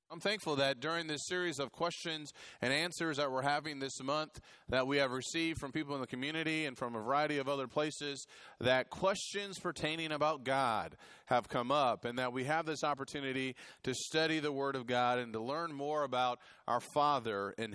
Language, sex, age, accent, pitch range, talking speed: English, male, 30-49, American, 130-160 Hz, 200 wpm